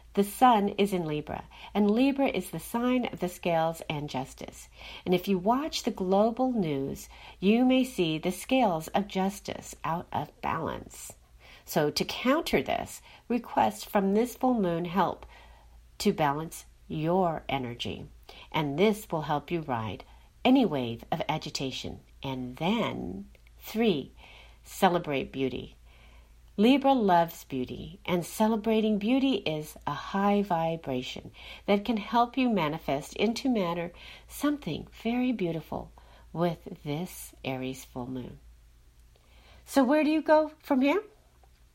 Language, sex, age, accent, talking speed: English, female, 50-69, American, 135 wpm